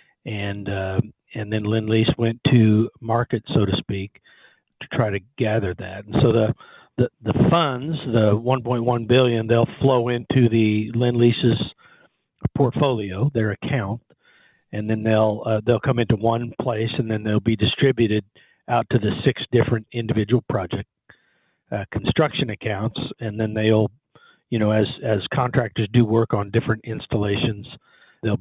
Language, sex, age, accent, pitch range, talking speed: English, male, 50-69, American, 105-120 Hz, 150 wpm